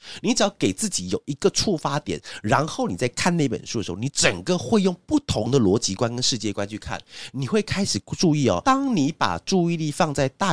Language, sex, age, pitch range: Chinese, male, 30-49, 95-160 Hz